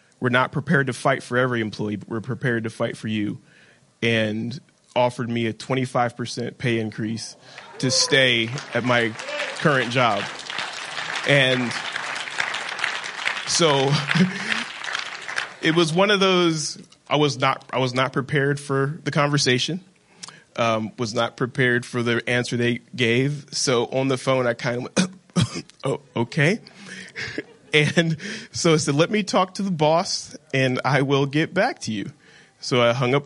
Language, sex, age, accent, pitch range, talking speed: English, male, 20-39, American, 120-160 Hz, 155 wpm